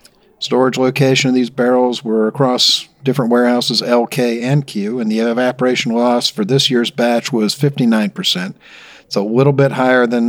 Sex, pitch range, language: male, 105-130 Hz, English